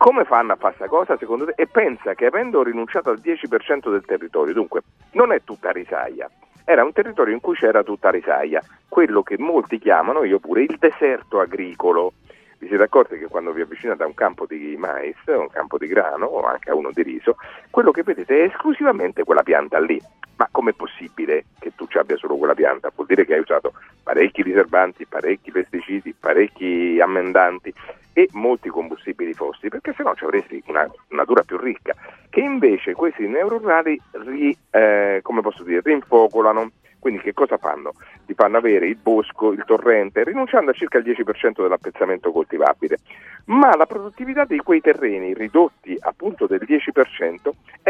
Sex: male